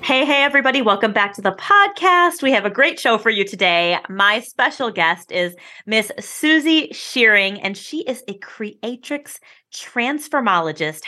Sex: female